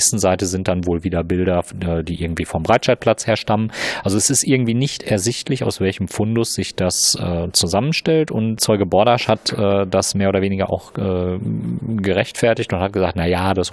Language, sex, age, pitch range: German, male, 40-59, 90-110 Hz